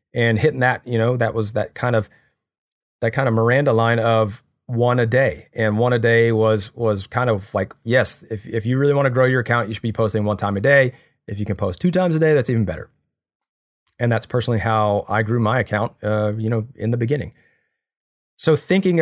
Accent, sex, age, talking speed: American, male, 30-49, 230 wpm